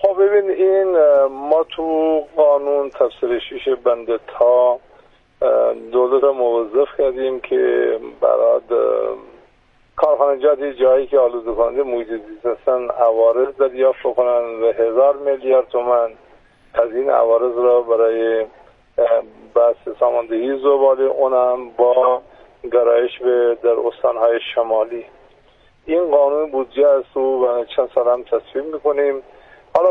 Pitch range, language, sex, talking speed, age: 120-155 Hz, Persian, male, 110 wpm, 50-69